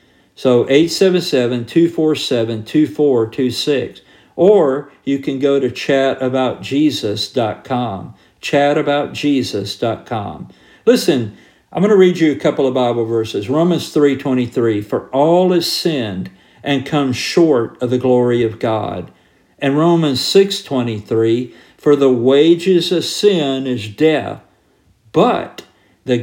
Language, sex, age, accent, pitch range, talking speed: English, male, 50-69, American, 120-155 Hz, 110 wpm